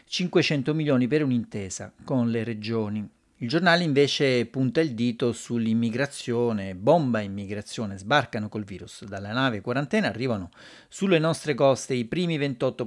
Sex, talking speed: male, 135 wpm